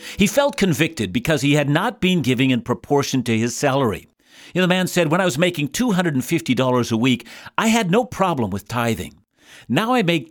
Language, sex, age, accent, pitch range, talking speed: English, male, 60-79, American, 120-180 Hz, 205 wpm